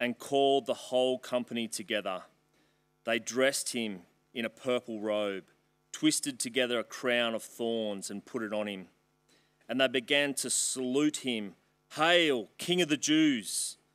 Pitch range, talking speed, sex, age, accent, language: 105-125 Hz, 150 wpm, male, 30-49, Australian, English